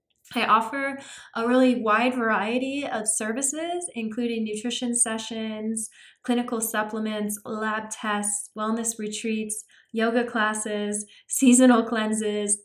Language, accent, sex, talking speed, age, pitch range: English, American, female, 100 wpm, 20-39, 210-255 Hz